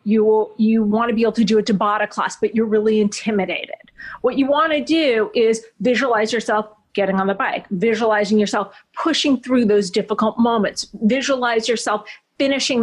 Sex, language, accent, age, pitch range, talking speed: female, English, American, 30-49, 200-240 Hz, 180 wpm